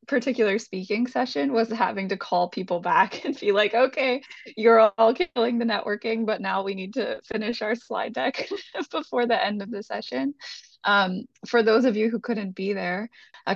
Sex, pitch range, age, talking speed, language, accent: female, 175-225 Hz, 20-39, 190 wpm, English, American